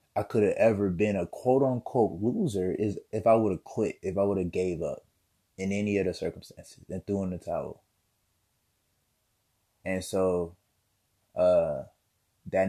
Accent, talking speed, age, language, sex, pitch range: American, 165 wpm, 20-39, English, male, 95-110 Hz